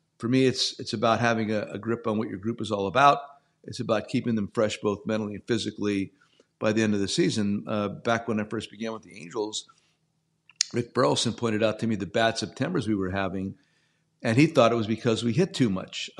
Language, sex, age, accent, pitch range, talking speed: English, male, 50-69, American, 110-130 Hz, 230 wpm